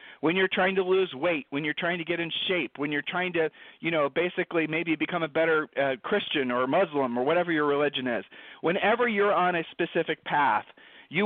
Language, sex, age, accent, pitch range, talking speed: English, male, 40-59, American, 150-195 Hz, 215 wpm